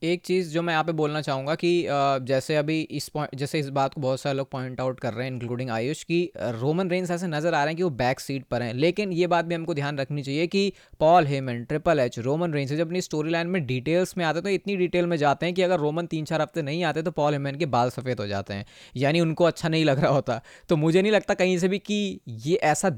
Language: Hindi